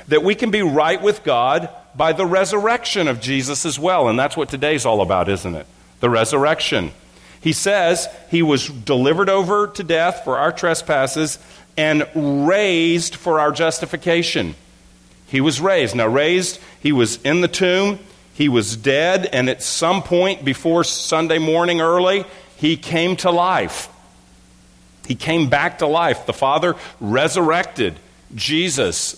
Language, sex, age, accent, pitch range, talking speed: English, male, 50-69, American, 125-175 Hz, 150 wpm